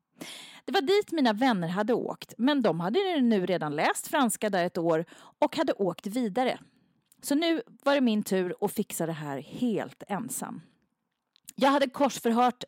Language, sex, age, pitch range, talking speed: English, female, 30-49, 180-255 Hz, 170 wpm